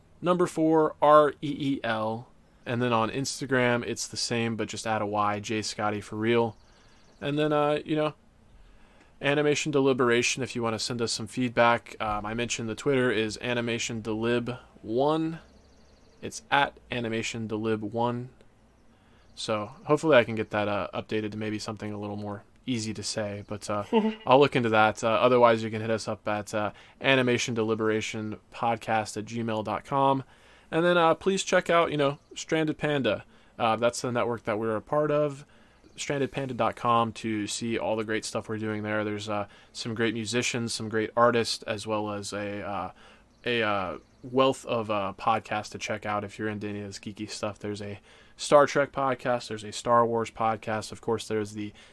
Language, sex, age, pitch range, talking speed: English, male, 20-39, 105-125 Hz, 185 wpm